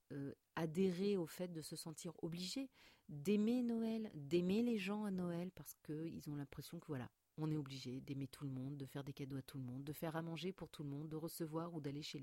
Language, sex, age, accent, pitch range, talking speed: English, female, 40-59, French, 140-185 Hz, 235 wpm